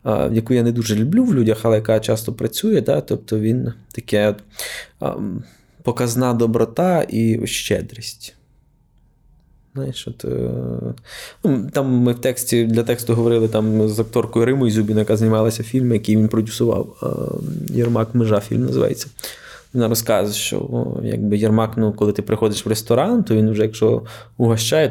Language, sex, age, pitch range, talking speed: Ukrainian, male, 20-39, 110-125 Hz, 145 wpm